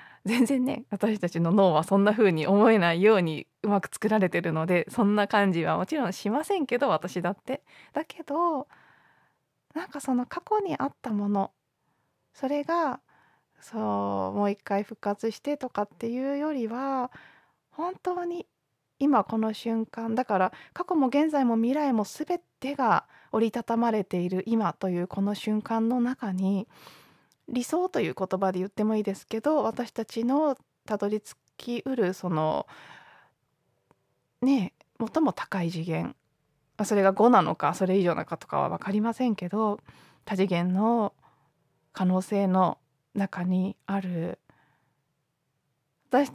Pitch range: 175-250 Hz